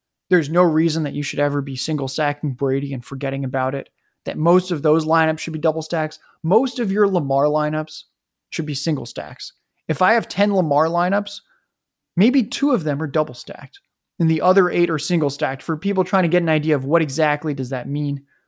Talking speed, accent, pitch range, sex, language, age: 200 wpm, American, 145-180 Hz, male, English, 20-39